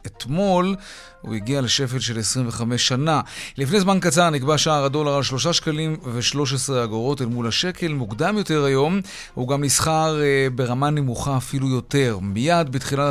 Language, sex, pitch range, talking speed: Hebrew, male, 120-160 Hz, 145 wpm